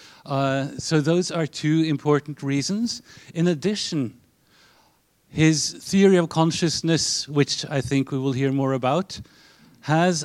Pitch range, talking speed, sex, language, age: 135-160 Hz, 130 wpm, male, English, 50-69